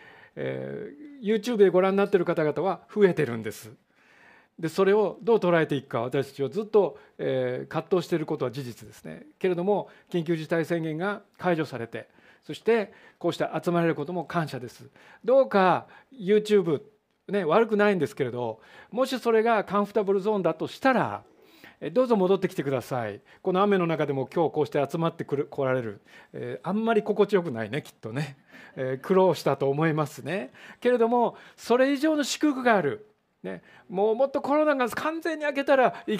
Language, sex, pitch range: Japanese, male, 145-215 Hz